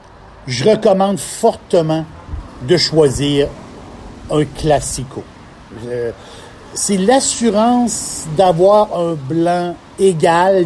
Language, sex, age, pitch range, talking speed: French, male, 60-79, 135-200 Hz, 80 wpm